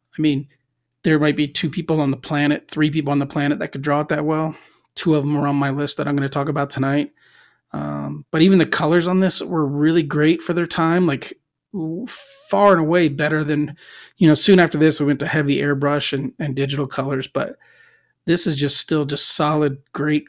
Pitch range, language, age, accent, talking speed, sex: 135-155 Hz, English, 30-49, American, 225 wpm, male